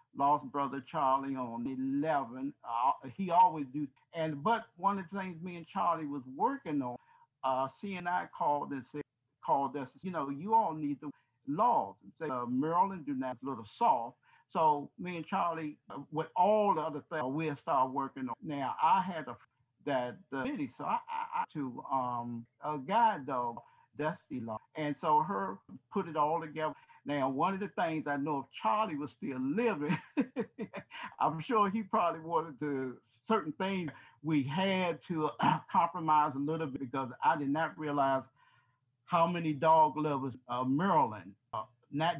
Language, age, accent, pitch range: English, 50-69, American, 130-180 Hz